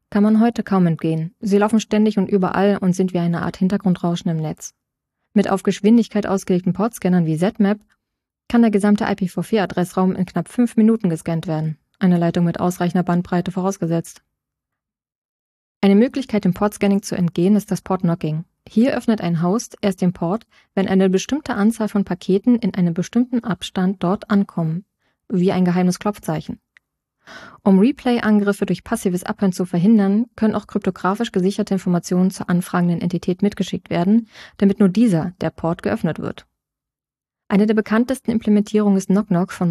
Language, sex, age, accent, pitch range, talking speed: German, female, 20-39, German, 180-210 Hz, 155 wpm